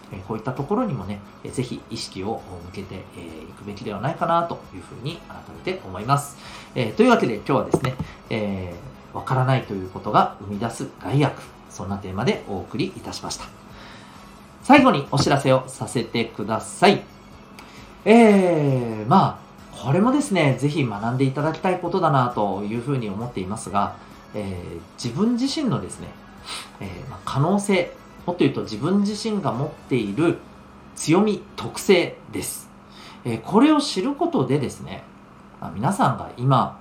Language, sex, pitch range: Japanese, male, 100-165 Hz